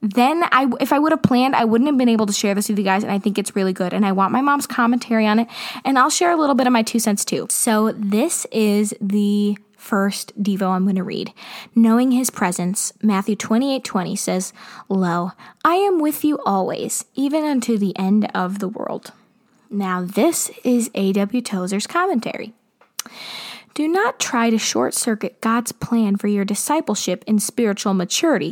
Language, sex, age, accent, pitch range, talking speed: English, female, 20-39, American, 200-245 Hz, 195 wpm